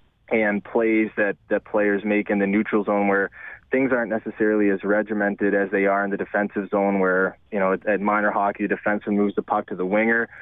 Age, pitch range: 20-39, 100-110 Hz